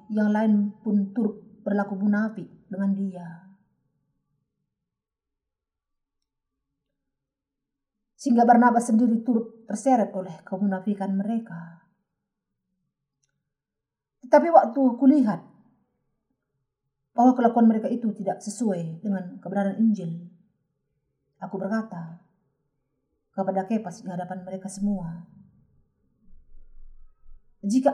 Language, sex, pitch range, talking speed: Indonesian, female, 175-215 Hz, 80 wpm